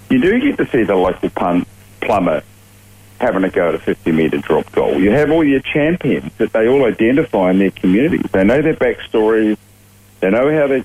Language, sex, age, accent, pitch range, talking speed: English, male, 50-69, Australian, 95-115 Hz, 200 wpm